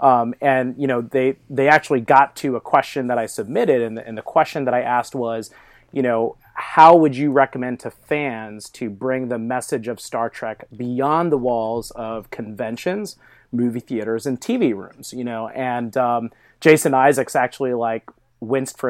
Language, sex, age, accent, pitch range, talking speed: English, male, 30-49, American, 120-140 Hz, 180 wpm